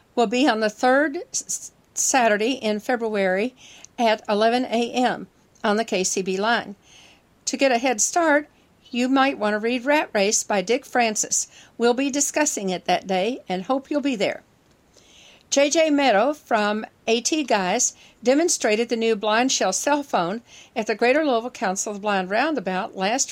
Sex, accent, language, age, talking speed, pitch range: female, American, English, 60-79, 160 wpm, 205-260 Hz